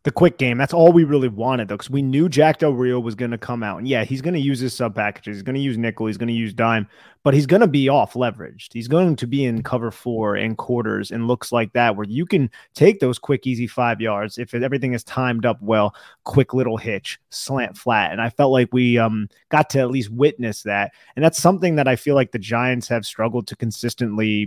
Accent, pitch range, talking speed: American, 115-140 Hz, 255 wpm